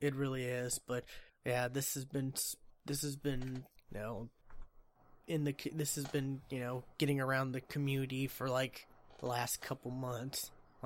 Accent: American